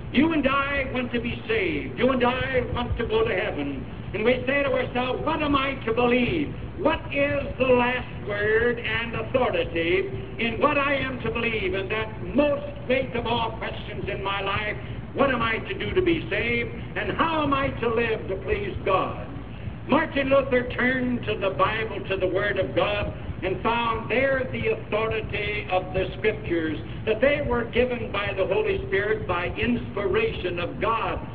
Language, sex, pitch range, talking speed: English, male, 225-280 Hz, 185 wpm